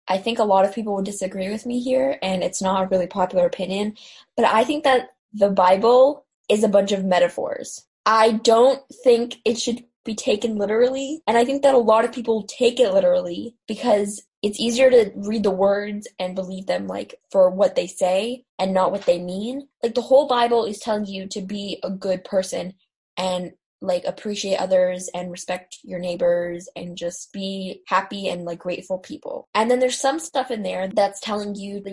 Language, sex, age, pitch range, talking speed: English, female, 10-29, 190-240 Hz, 200 wpm